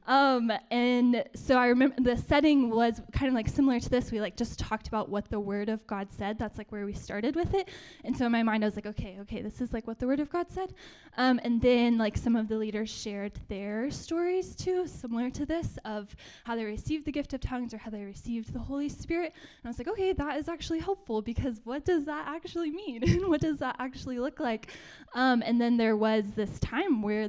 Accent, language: American, English